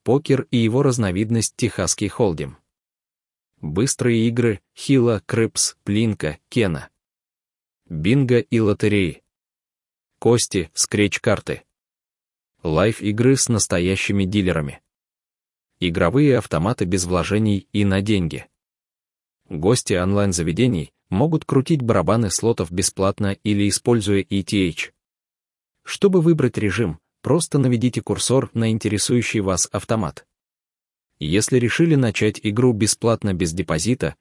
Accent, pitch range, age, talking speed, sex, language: native, 90-115 Hz, 20-39, 95 wpm, male, Ukrainian